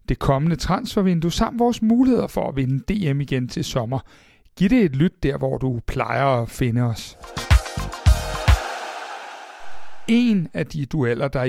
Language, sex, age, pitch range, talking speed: Danish, male, 60-79, 125-175 Hz, 150 wpm